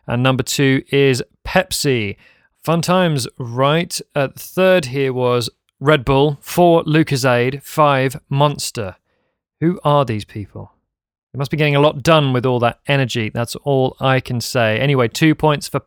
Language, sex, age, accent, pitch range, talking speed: English, male, 30-49, British, 125-155 Hz, 165 wpm